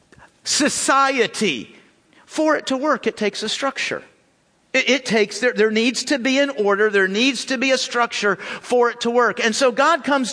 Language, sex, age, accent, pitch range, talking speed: English, male, 50-69, American, 195-265 Hz, 190 wpm